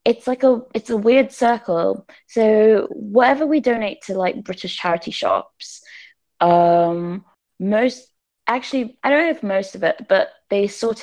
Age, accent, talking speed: 20-39, British, 160 wpm